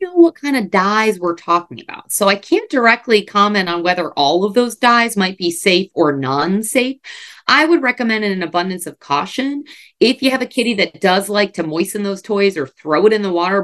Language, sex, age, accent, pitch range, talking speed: English, female, 30-49, American, 175-235 Hz, 215 wpm